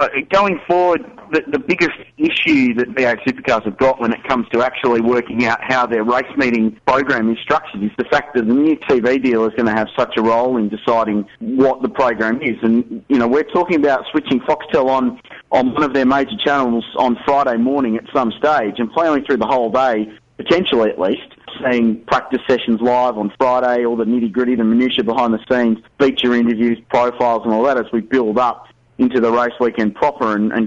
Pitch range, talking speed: 115-140 Hz, 210 wpm